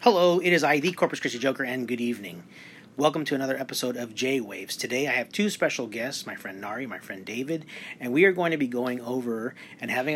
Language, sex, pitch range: English, male, 120-150 Hz